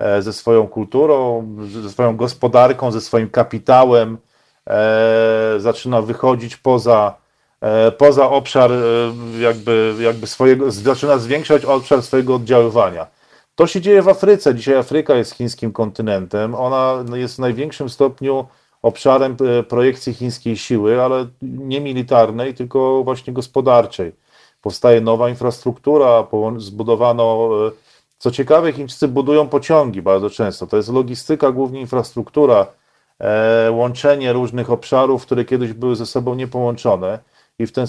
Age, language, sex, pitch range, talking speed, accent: 40-59, Polish, male, 115-140 Hz, 115 wpm, native